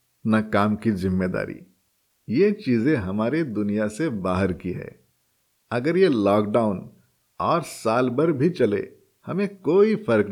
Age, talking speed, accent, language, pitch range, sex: 50-69, 135 wpm, native, Hindi, 105-145 Hz, male